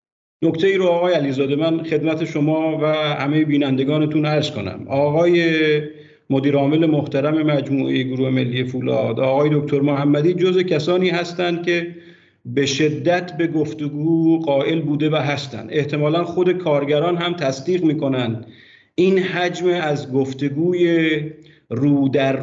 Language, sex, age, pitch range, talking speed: Persian, male, 50-69, 140-160 Hz, 130 wpm